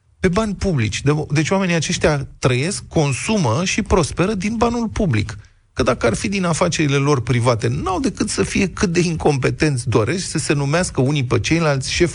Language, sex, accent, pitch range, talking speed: Romanian, male, native, 115-175 Hz, 180 wpm